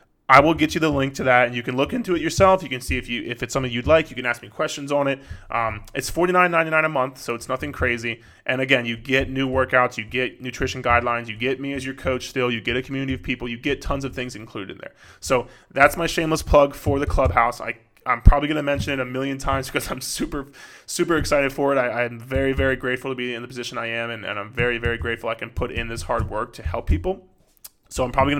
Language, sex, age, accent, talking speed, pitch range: English, male, 20-39, American, 275 wpm, 125-160 Hz